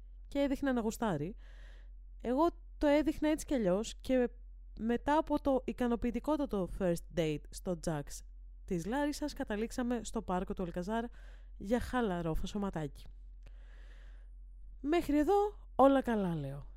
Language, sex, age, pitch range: Greek, female, 20-39, 165-245 Hz